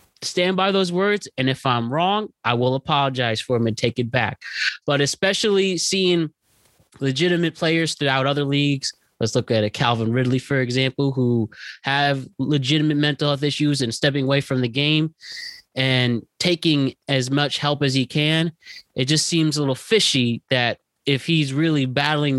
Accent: American